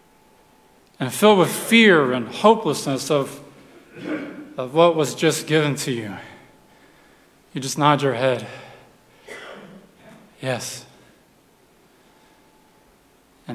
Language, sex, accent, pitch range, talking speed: English, male, American, 130-175 Hz, 95 wpm